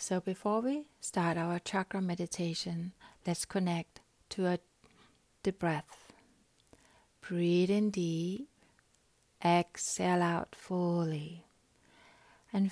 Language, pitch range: English, 170-210 Hz